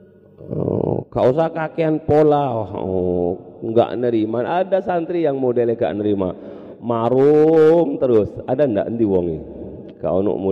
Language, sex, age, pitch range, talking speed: Indonesian, male, 40-59, 105-150 Hz, 120 wpm